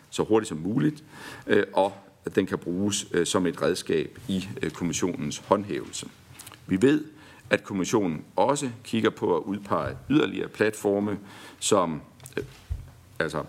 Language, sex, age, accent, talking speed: Danish, male, 50-69, native, 125 wpm